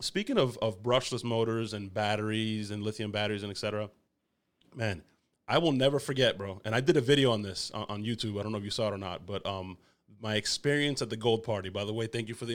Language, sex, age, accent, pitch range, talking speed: English, male, 30-49, American, 110-145 Hz, 255 wpm